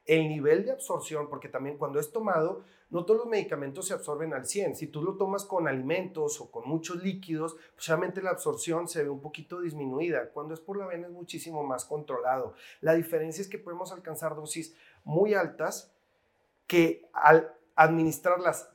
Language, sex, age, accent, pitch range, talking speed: Spanish, male, 40-59, Mexican, 155-190 Hz, 180 wpm